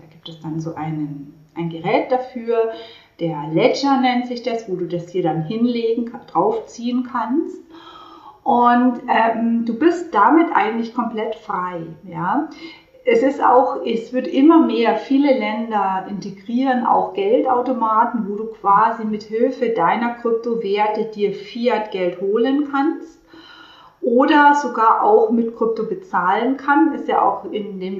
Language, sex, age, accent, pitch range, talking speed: German, female, 40-59, German, 210-285 Hz, 135 wpm